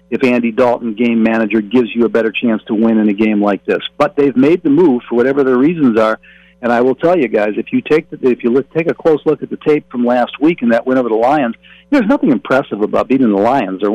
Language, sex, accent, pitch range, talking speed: English, male, American, 115-145 Hz, 275 wpm